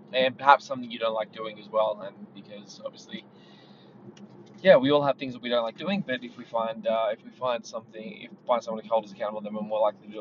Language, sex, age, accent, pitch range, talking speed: English, male, 20-39, Australian, 110-145 Hz, 265 wpm